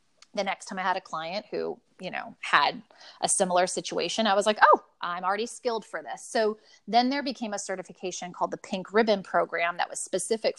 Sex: female